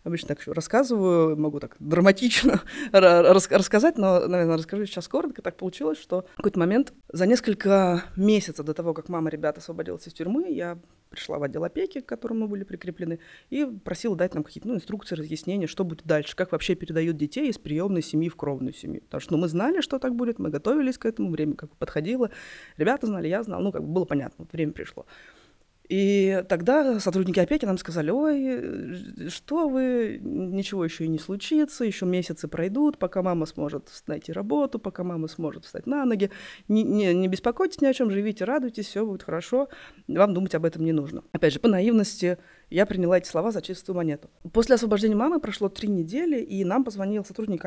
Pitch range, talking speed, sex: 170-230 Hz, 195 wpm, female